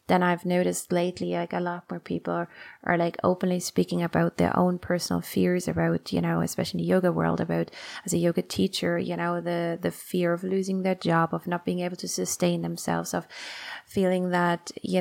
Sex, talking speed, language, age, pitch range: female, 210 wpm, English, 20-39, 170-185 Hz